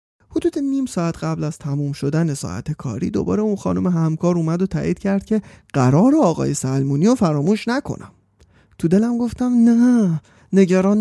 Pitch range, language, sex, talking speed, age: 145-205 Hz, Persian, male, 160 wpm, 30-49